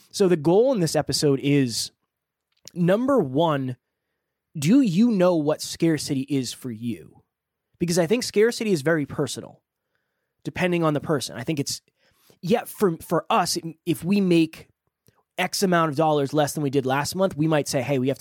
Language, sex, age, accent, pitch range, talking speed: English, male, 20-39, American, 140-185 Hz, 180 wpm